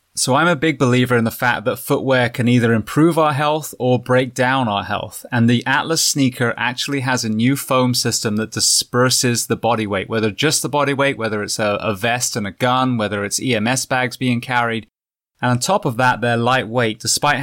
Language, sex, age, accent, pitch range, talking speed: English, male, 20-39, British, 115-135 Hz, 215 wpm